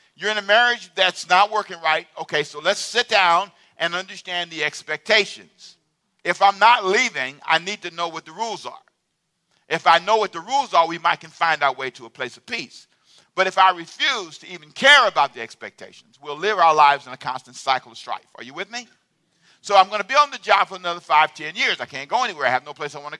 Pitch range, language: 165-215 Hz, English